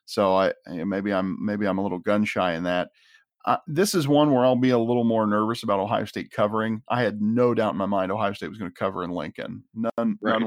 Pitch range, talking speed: 105-125 Hz, 250 wpm